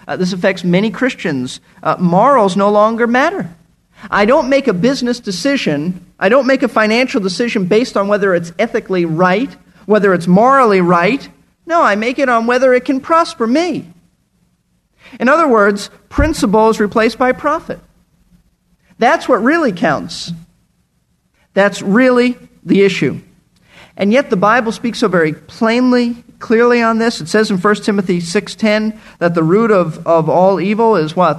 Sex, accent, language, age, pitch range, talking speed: male, American, English, 50-69, 180-240 Hz, 160 wpm